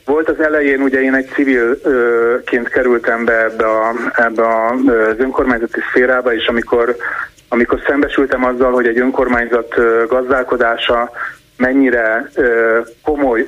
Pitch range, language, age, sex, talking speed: 115-140 Hz, Hungarian, 30-49, male, 110 wpm